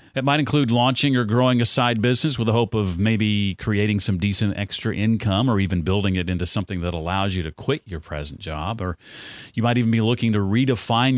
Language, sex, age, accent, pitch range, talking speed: English, male, 40-59, American, 100-125 Hz, 220 wpm